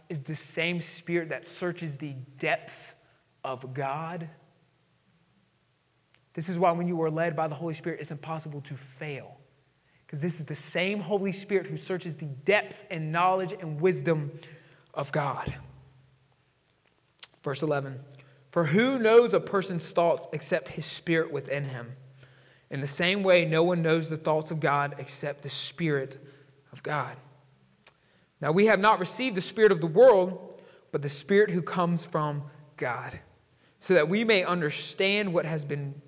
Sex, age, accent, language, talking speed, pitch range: male, 20-39, American, English, 160 wpm, 140-180 Hz